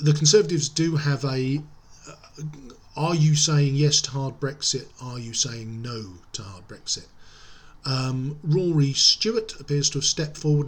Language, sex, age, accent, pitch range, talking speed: English, male, 40-59, British, 120-150 Hz, 155 wpm